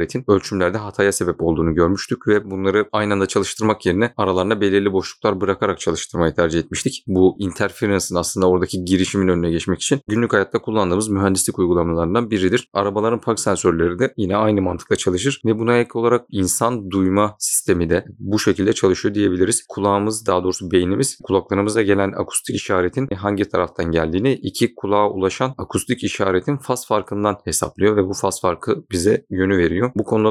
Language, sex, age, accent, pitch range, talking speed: Turkish, male, 30-49, native, 90-110 Hz, 160 wpm